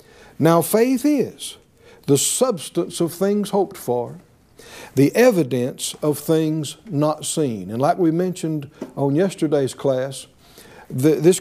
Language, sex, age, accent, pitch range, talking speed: English, male, 60-79, American, 145-200 Hz, 120 wpm